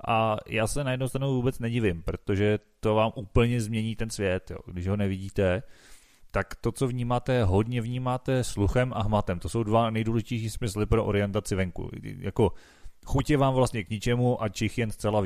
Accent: native